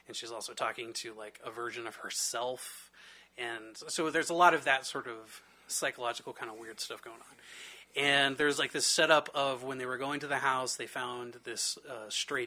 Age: 30-49